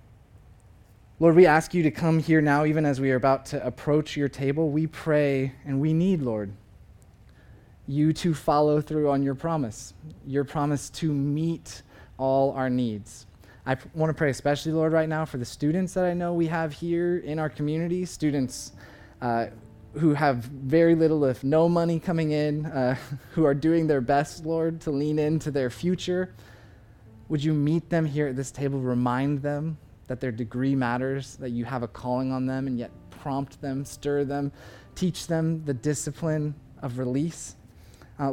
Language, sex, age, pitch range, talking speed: English, male, 20-39, 125-160 Hz, 180 wpm